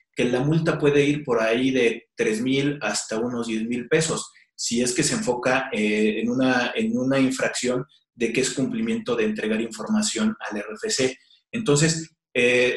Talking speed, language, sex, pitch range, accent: 165 wpm, Spanish, male, 125-155 Hz, Mexican